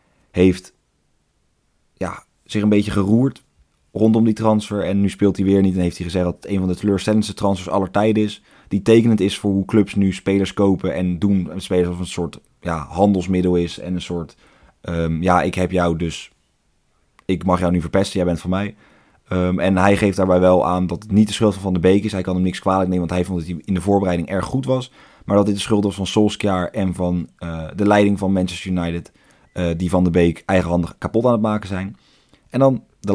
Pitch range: 90-105 Hz